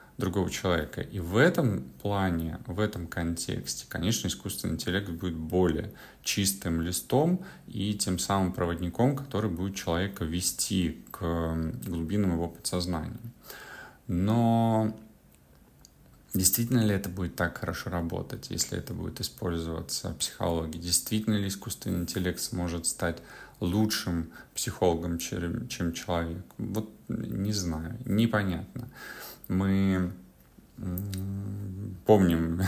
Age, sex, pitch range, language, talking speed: 30-49, male, 85-100 Hz, Russian, 105 wpm